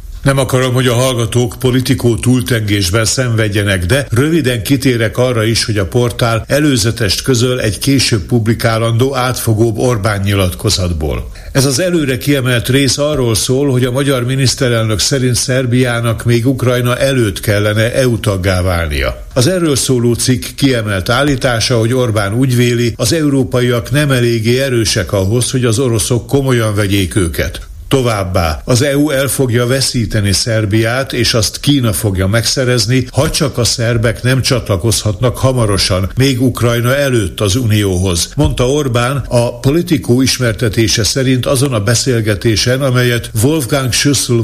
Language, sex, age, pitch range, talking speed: Hungarian, male, 60-79, 110-130 Hz, 140 wpm